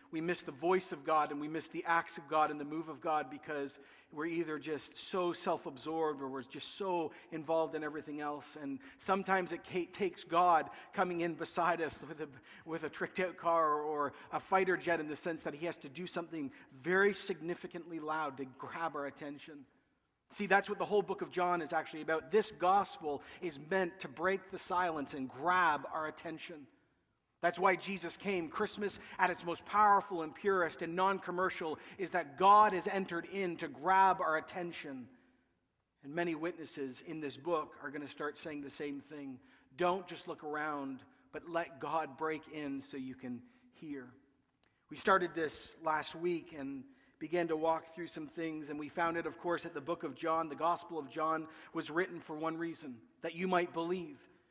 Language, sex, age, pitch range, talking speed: English, male, 40-59, 150-180 Hz, 195 wpm